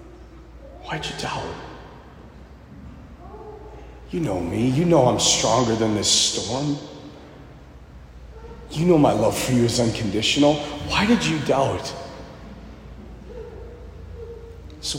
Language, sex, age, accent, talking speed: English, male, 40-59, American, 110 wpm